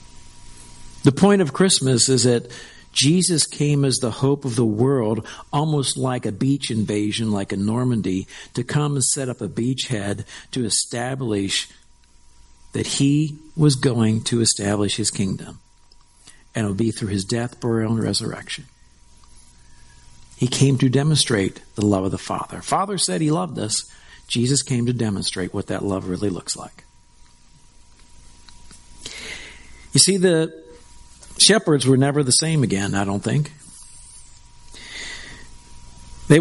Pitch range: 100-140 Hz